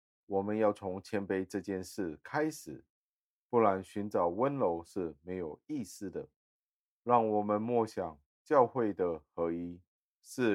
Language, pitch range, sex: Chinese, 85-105 Hz, male